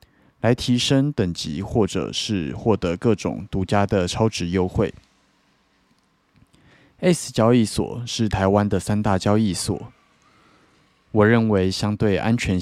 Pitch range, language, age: 95-115 Hz, Chinese, 20-39